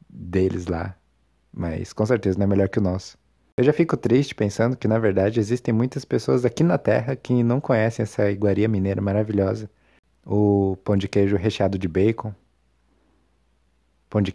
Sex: male